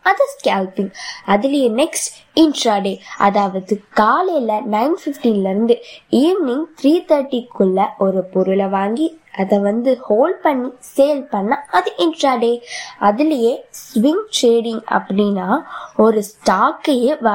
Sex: female